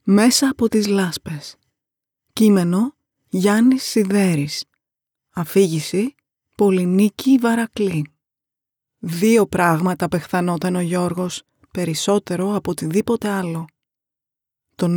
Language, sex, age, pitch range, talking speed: Greek, female, 20-39, 170-205 Hz, 80 wpm